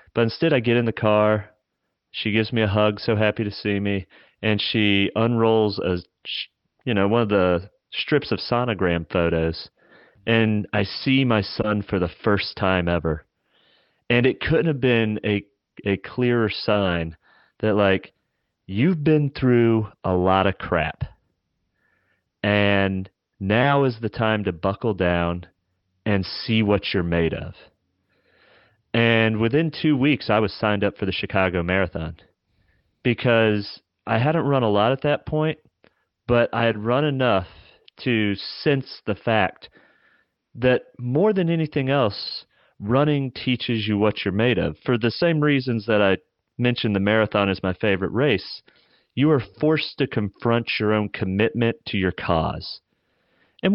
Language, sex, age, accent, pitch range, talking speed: English, male, 30-49, American, 95-120 Hz, 155 wpm